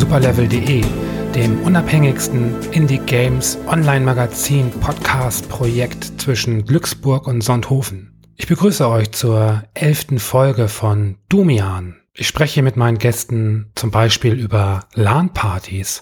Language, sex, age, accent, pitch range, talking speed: German, male, 30-49, German, 110-130 Hz, 115 wpm